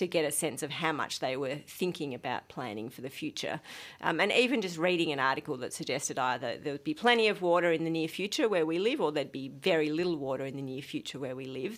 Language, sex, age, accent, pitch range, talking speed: English, female, 50-69, Australian, 145-190 Hz, 260 wpm